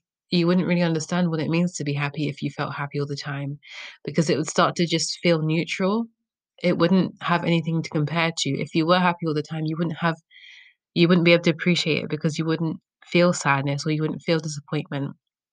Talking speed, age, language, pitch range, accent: 230 wpm, 20-39, English, 145-170 Hz, British